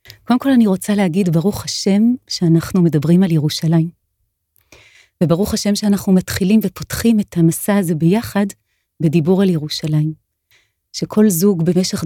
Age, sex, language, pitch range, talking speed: 30-49, female, Hebrew, 150-190 Hz, 130 wpm